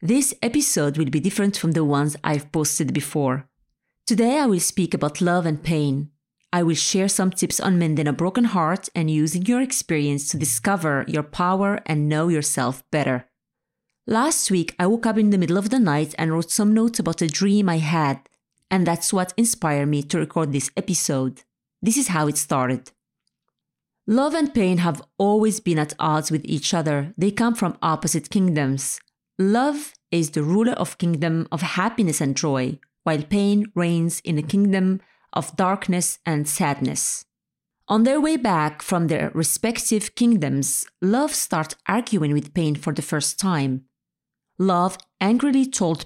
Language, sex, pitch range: English, female, 150-215 Hz